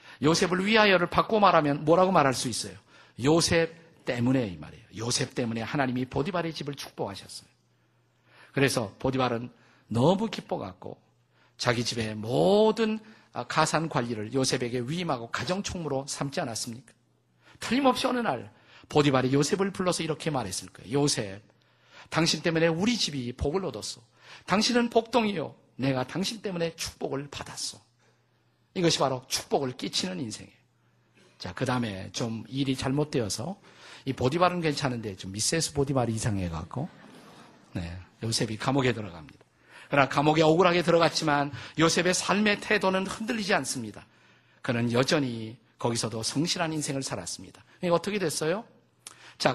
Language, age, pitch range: Korean, 50-69, 120-165 Hz